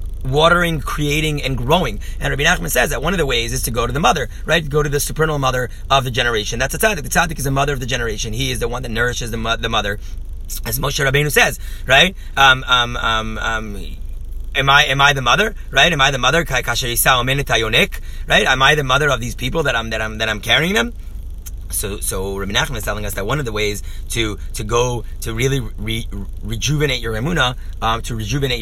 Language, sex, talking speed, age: English, male, 225 wpm, 30-49